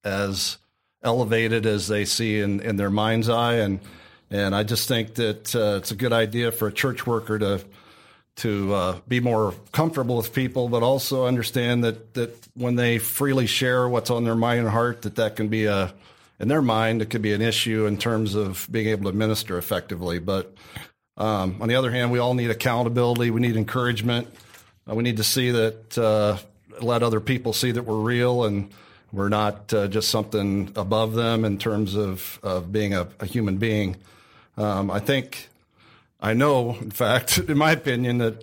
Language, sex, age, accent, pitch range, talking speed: English, male, 40-59, American, 105-120 Hz, 195 wpm